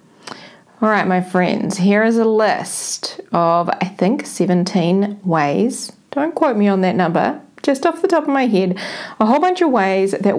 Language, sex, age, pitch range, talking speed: English, female, 40-59, 180-230 Hz, 180 wpm